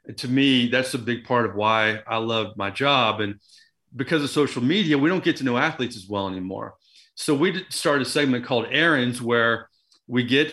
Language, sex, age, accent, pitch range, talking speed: English, male, 30-49, American, 120-155 Hz, 205 wpm